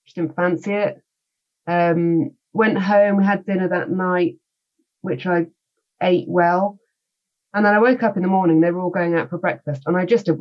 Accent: British